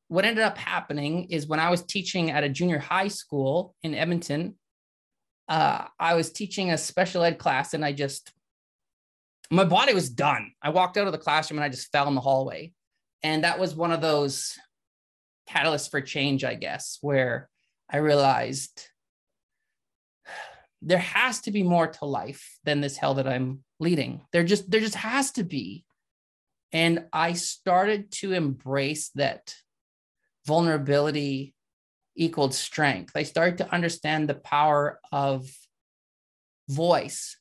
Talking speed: 150 wpm